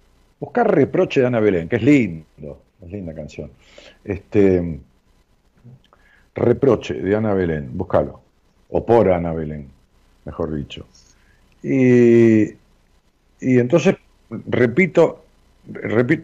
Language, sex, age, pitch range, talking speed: Spanish, male, 50-69, 85-120 Hz, 105 wpm